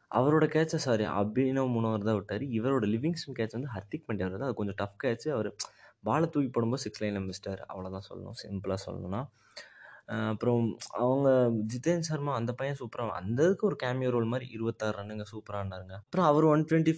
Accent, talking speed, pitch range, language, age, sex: native, 175 wpm, 105-130 Hz, Tamil, 20-39, male